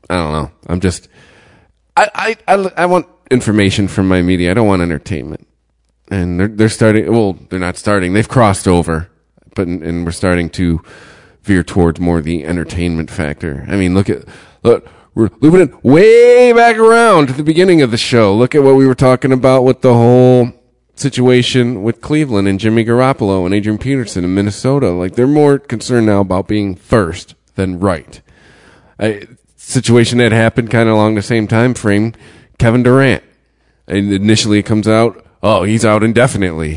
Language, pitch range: English, 95-130 Hz